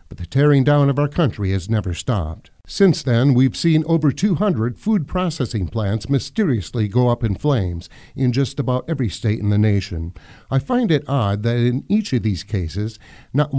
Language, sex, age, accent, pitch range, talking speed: English, male, 50-69, American, 105-145 Hz, 190 wpm